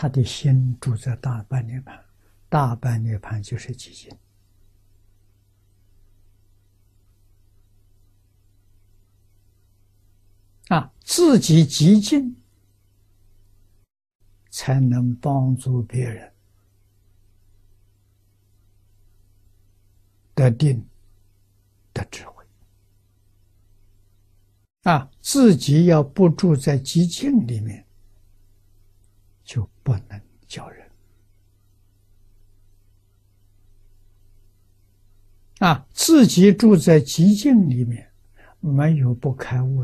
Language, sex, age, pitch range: Chinese, male, 60-79, 100-125 Hz